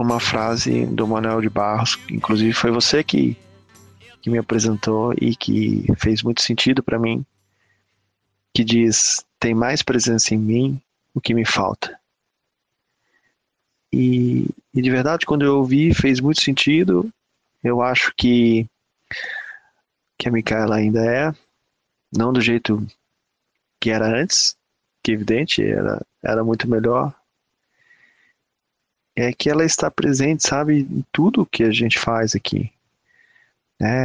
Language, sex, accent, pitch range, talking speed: Portuguese, male, Brazilian, 110-135 Hz, 135 wpm